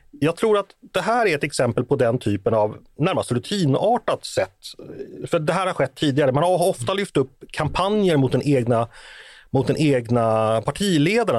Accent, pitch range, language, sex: native, 120-175 Hz, Swedish, male